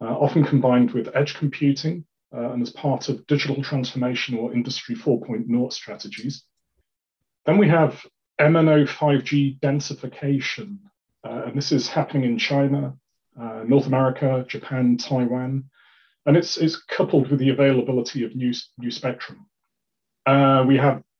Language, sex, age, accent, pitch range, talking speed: English, male, 30-49, British, 125-150 Hz, 135 wpm